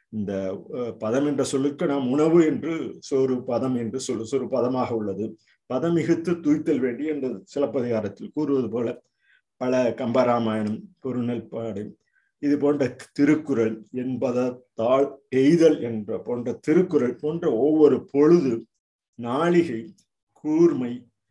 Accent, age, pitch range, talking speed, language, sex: native, 50-69, 115-145 Hz, 105 wpm, Tamil, male